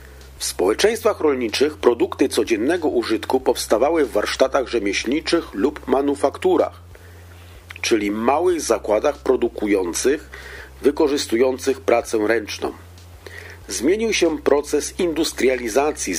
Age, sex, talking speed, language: 40-59, male, 85 wpm, Polish